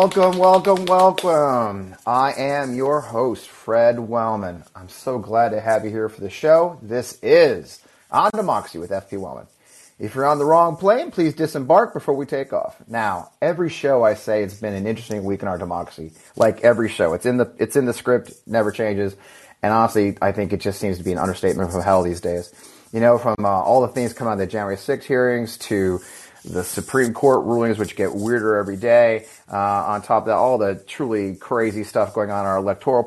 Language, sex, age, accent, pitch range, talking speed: English, male, 30-49, American, 100-125 Hz, 210 wpm